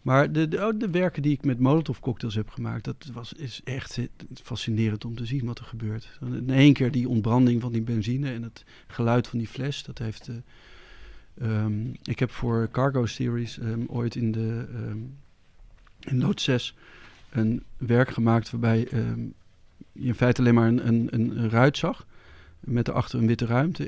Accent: Dutch